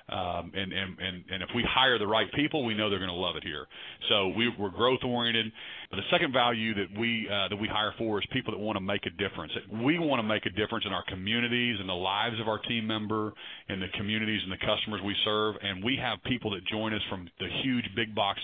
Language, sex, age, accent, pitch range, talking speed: English, male, 40-59, American, 100-115 Hz, 245 wpm